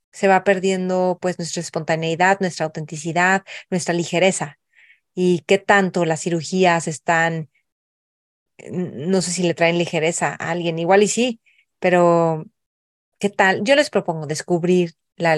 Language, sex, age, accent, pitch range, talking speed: Spanish, female, 30-49, Mexican, 170-195 Hz, 135 wpm